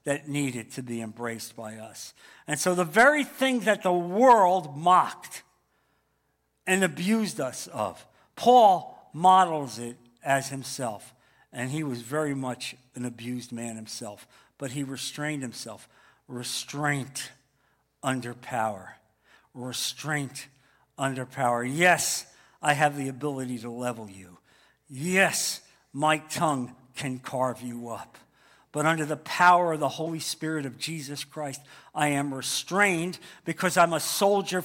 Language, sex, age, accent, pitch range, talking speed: English, male, 60-79, American, 135-185 Hz, 135 wpm